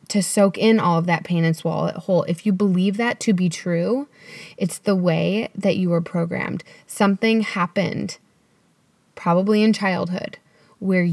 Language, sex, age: English, female, 20-39